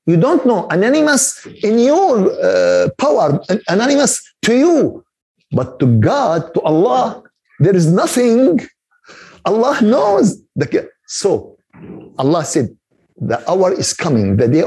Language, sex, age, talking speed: Arabic, male, 50-69, 125 wpm